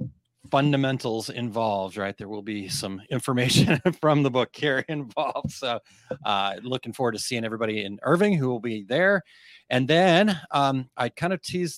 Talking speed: 170 wpm